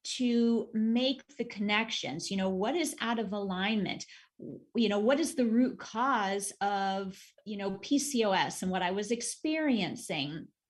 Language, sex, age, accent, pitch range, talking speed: English, female, 30-49, American, 200-255 Hz, 150 wpm